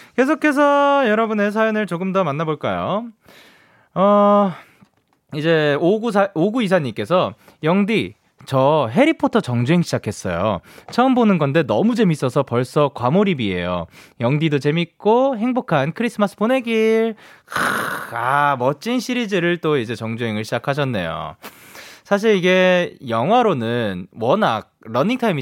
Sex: male